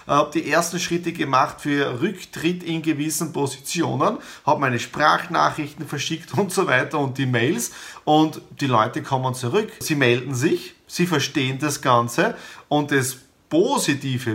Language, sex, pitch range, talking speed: German, male, 125-155 Hz, 145 wpm